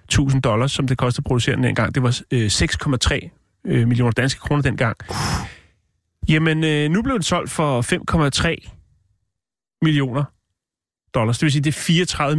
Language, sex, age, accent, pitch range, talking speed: Danish, male, 30-49, native, 110-140 Hz, 150 wpm